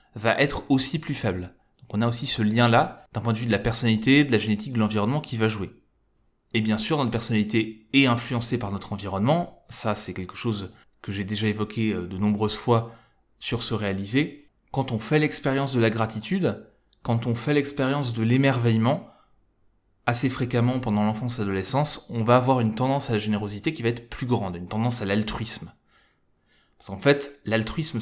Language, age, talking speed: French, 20-39, 195 wpm